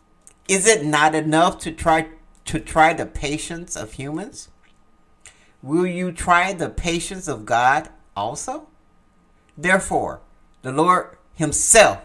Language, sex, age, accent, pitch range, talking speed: English, male, 60-79, American, 125-170 Hz, 120 wpm